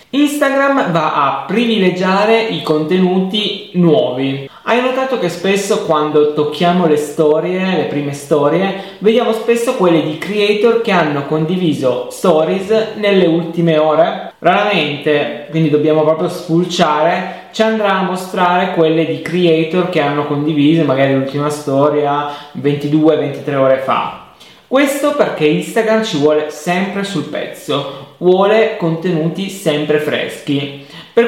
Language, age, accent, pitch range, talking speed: Italian, 20-39, native, 150-200 Hz, 125 wpm